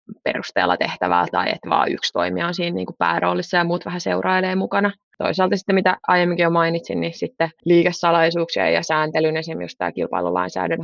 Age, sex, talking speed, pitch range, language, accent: 20-39, female, 165 wpm, 165-185 Hz, Finnish, native